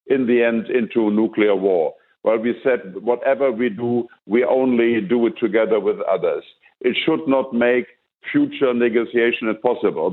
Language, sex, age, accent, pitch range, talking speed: English, male, 50-69, German, 110-135 Hz, 155 wpm